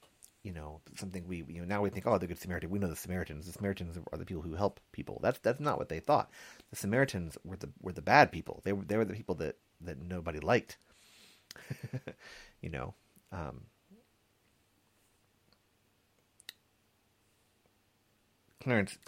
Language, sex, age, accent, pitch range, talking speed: English, male, 40-59, American, 85-105 Hz, 165 wpm